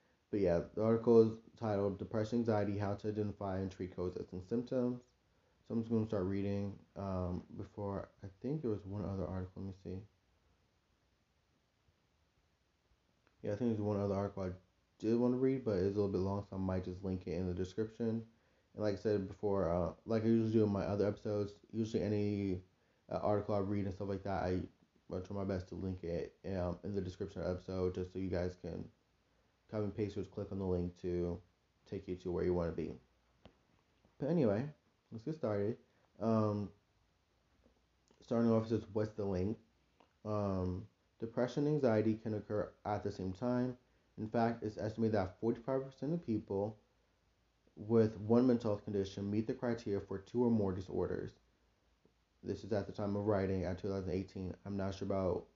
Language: English